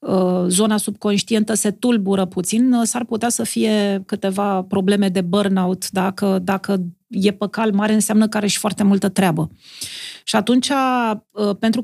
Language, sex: Romanian, female